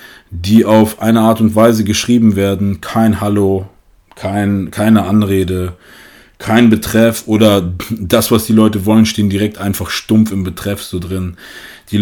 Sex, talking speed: male, 145 wpm